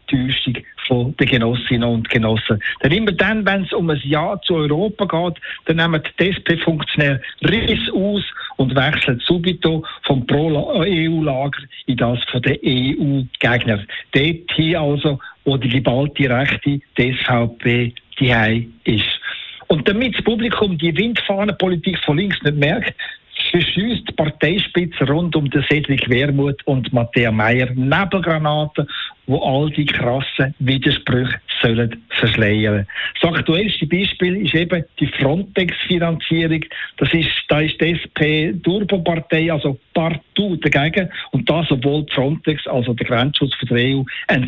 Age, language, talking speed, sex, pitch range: 60-79, German, 135 wpm, male, 130-170 Hz